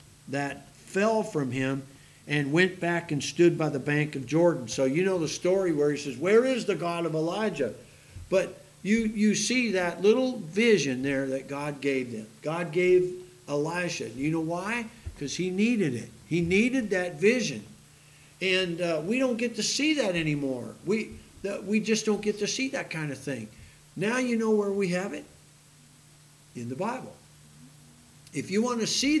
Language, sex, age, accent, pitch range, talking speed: English, male, 50-69, American, 145-200 Hz, 185 wpm